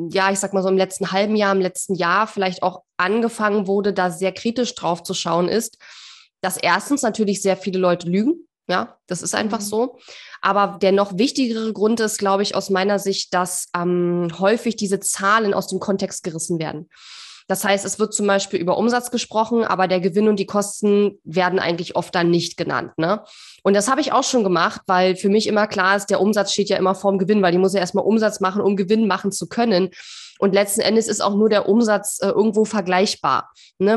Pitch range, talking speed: 185-215 Hz, 215 wpm